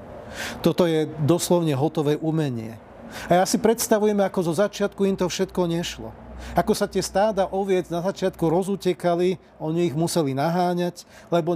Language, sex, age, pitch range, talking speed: Slovak, male, 40-59, 145-185 Hz, 150 wpm